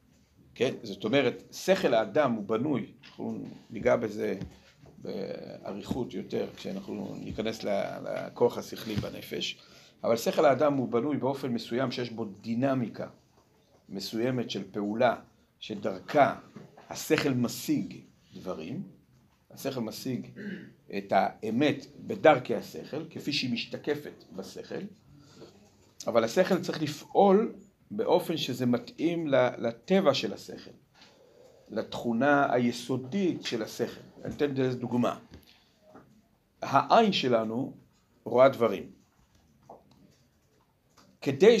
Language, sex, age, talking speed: Hebrew, male, 50-69, 95 wpm